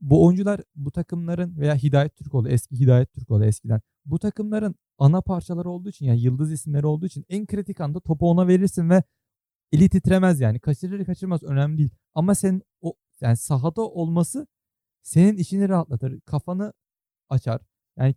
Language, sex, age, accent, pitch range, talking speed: Turkish, male, 40-59, native, 130-185 Hz, 160 wpm